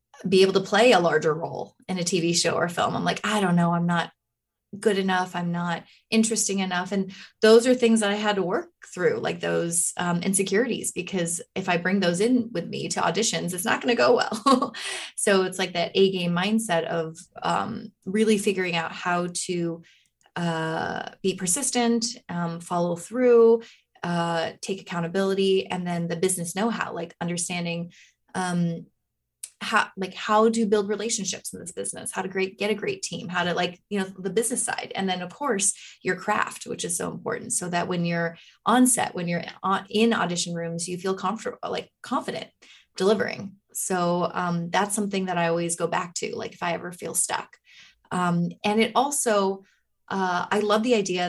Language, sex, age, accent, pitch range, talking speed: English, female, 20-39, American, 175-215 Hz, 190 wpm